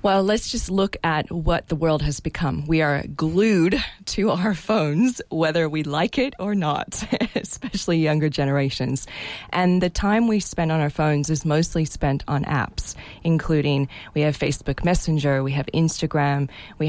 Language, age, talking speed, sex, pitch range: English, 20-39, 165 wpm, female, 145-180 Hz